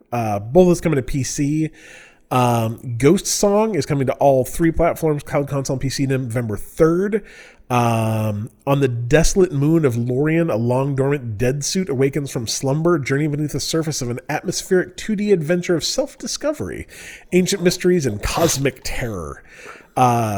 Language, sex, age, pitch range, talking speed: English, male, 30-49, 110-160 Hz, 150 wpm